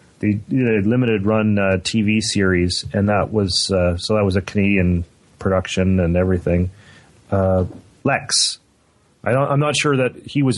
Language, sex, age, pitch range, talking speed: English, male, 30-49, 100-125 Hz, 165 wpm